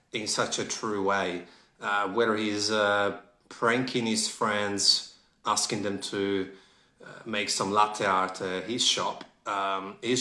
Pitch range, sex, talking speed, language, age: 95-125 Hz, male, 145 wpm, English, 30-49